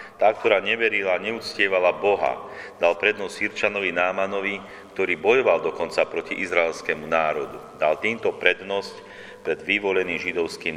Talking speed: 125 wpm